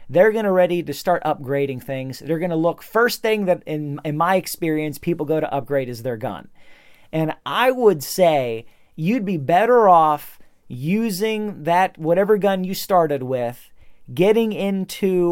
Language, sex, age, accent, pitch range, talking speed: English, male, 40-59, American, 145-190 Hz, 170 wpm